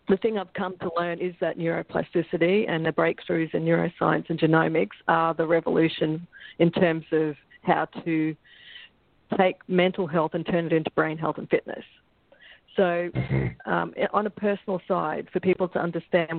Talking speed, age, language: 165 wpm, 50-69, English